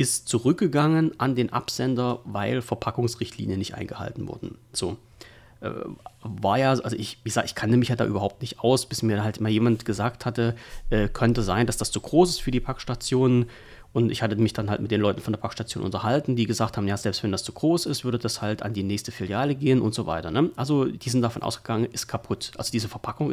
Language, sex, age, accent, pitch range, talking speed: German, male, 40-59, German, 105-130 Hz, 220 wpm